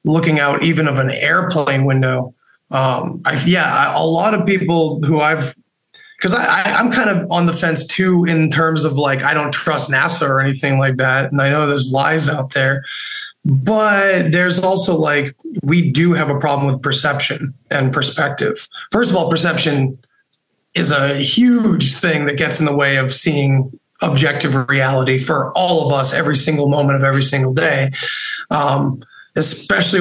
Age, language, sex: 20-39, English, male